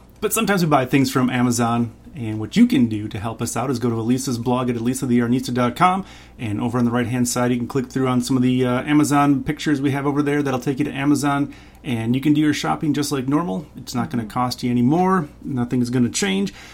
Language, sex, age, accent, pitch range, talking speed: English, male, 30-49, American, 120-150 Hz, 260 wpm